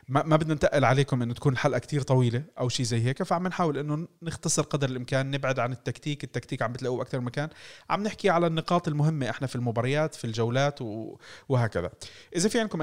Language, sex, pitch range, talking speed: Arabic, male, 115-145 Hz, 195 wpm